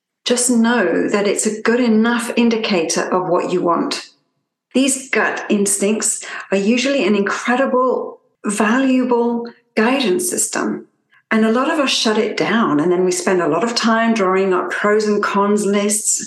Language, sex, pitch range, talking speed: English, female, 195-245 Hz, 160 wpm